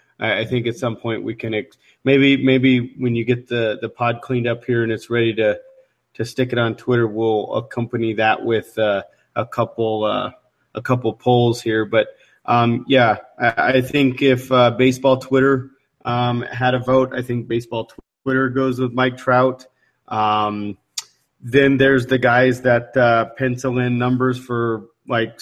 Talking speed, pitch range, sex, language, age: 170 wpm, 115-130 Hz, male, English, 30-49